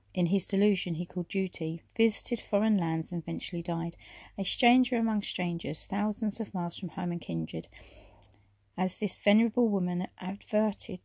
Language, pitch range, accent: English, 170-210 Hz, British